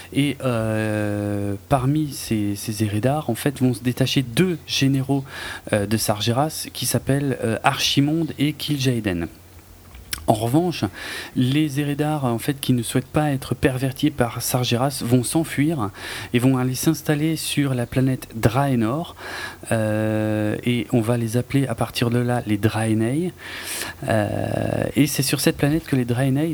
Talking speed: 150 wpm